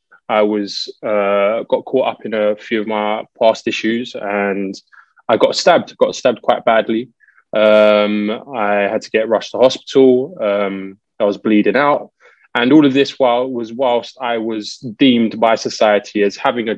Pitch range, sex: 105-125 Hz, male